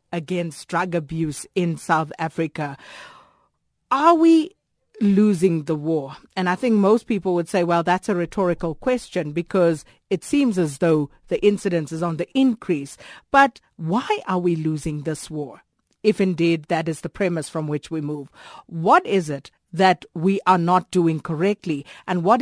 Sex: female